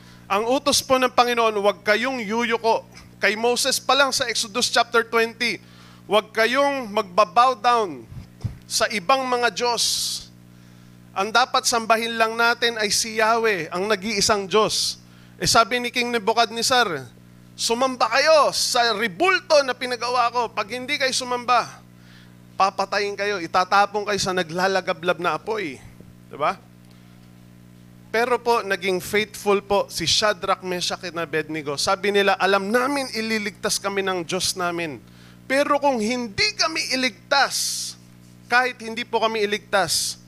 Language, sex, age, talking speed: Filipino, male, 20-39, 135 wpm